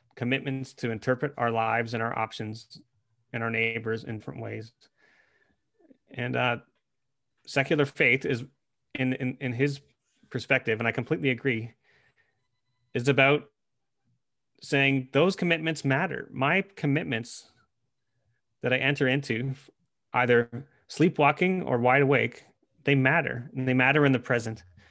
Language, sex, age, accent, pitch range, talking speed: English, male, 30-49, American, 115-140 Hz, 130 wpm